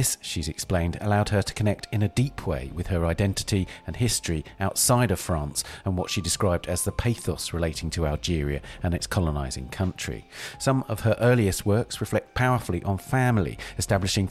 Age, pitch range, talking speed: 40-59, 85-110 Hz, 180 wpm